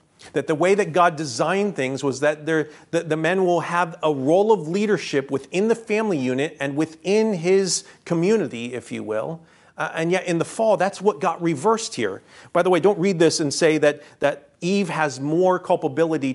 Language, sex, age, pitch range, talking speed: English, male, 40-59, 130-175 Hz, 200 wpm